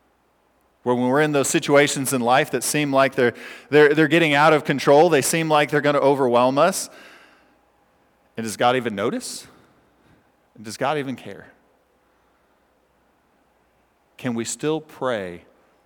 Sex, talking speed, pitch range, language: male, 150 wpm, 130-165 Hz, English